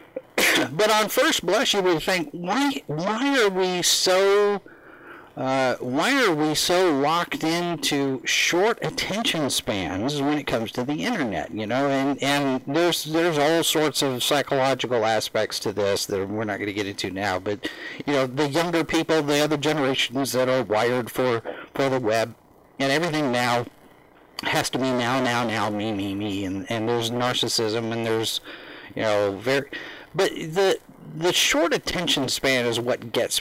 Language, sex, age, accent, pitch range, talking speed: English, male, 50-69, American, 125-170 Hz, 170 wpm